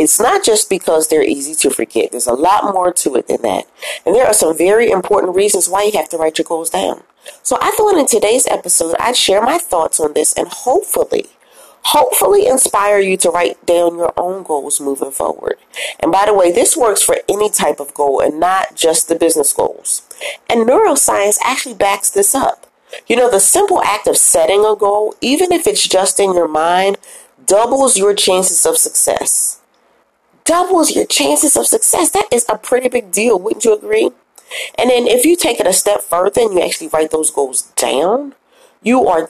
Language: English